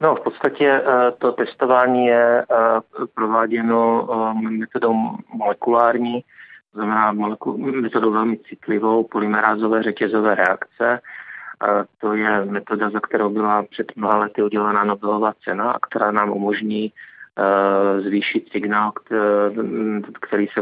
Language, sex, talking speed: Czech, male, 110 wpm